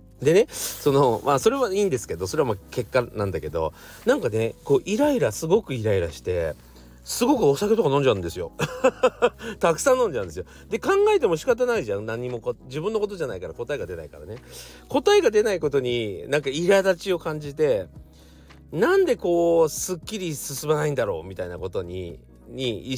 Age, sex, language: 40-59, male, Japanese